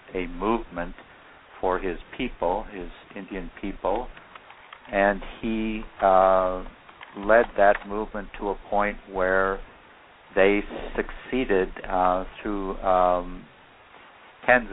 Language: English